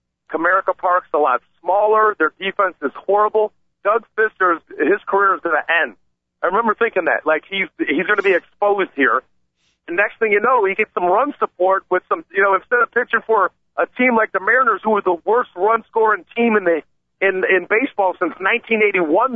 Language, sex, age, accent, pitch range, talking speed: English, male, 50-69, American, 170-230 Hz, 200 wpm